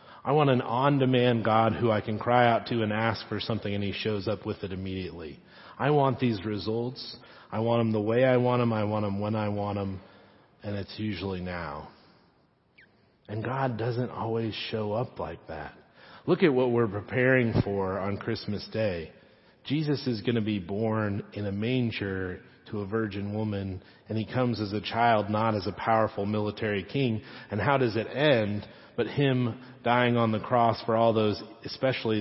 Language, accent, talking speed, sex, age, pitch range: English, American, 190 wpm, male, 40-59, 105-130 Hz